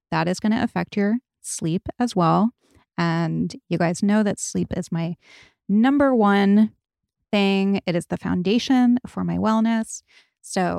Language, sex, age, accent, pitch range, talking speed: English, female, 20-39, American, 175-215 Hz, 150 wpm